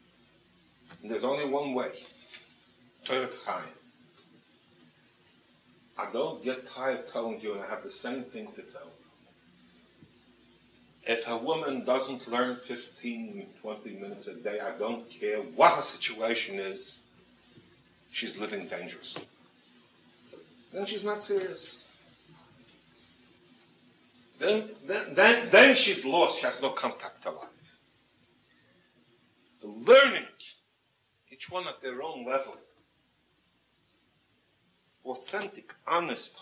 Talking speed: 105 wpm